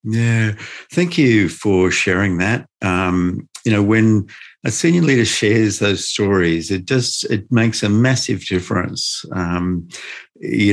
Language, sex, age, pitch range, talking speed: English, male, 50-69, 100-120 Hz, 140 wpm